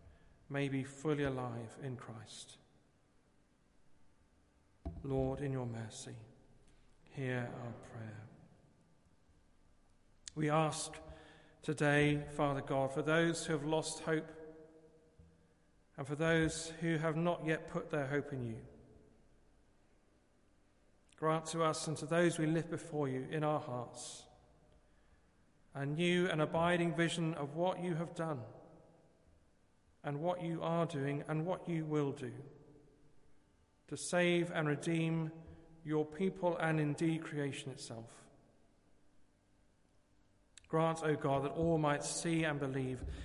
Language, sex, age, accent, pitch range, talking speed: English, male, 40-59, British, 120-160 Hz, 125 wpm